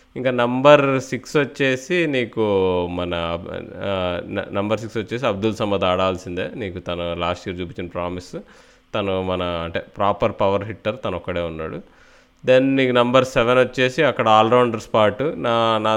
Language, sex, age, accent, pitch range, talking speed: Telugu, male, 20-39, native, 100-130 Hz, 135 wpm